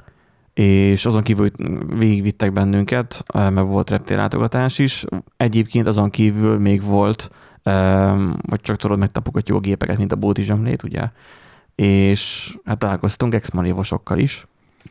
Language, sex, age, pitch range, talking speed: Hungarian, male, 20-39, 100-115 Hz, 120 wpm